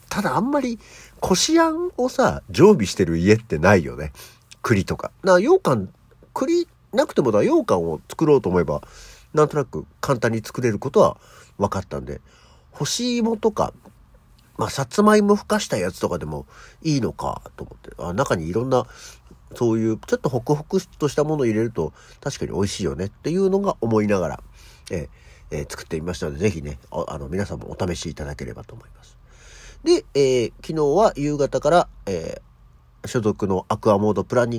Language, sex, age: Japanese, male, 50-69